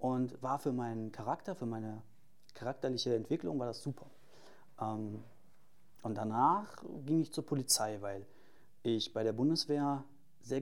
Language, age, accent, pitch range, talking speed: German, 30-49, German, 115-140 Hz, 135 wpm